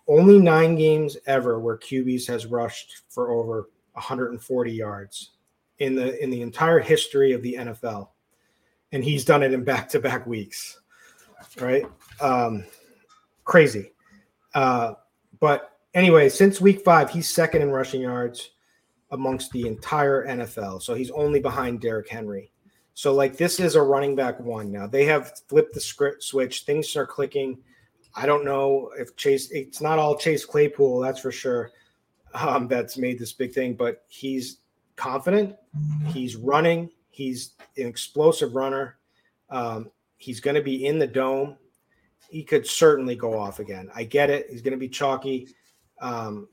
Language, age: English, 30-49